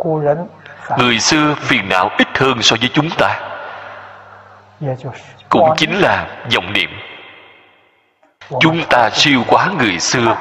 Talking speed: 120 wpm